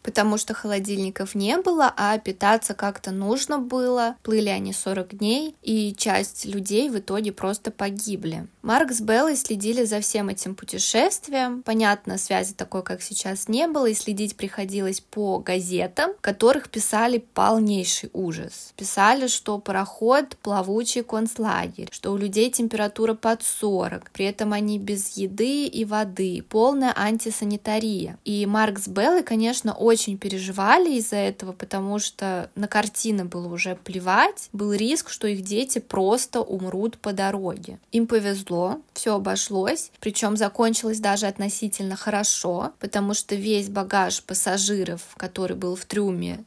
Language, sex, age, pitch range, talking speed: Russian, female, 20-39, 195-225 Hz, 140 wpm